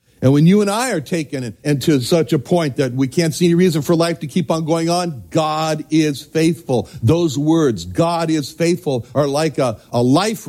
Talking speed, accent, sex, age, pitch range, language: 215 wpm, American, male, 60-79, 140-190 Hz, English